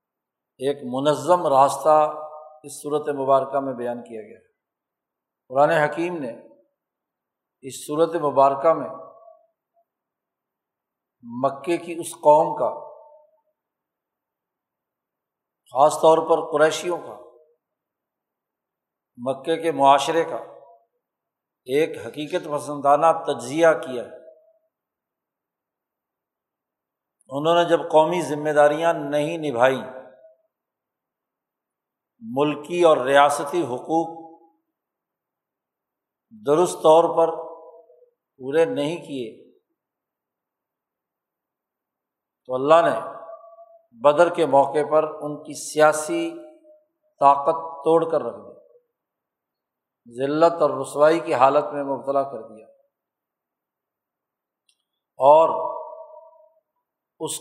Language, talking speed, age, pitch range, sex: Urdu, 85 wpm, 60-79, 145-185 Hz, male